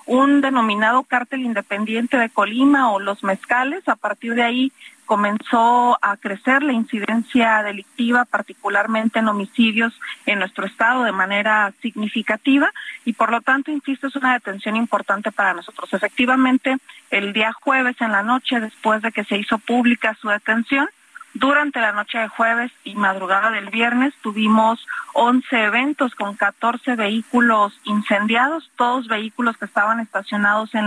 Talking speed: 150 wpm